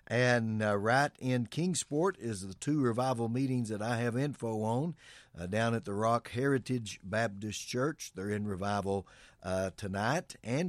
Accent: American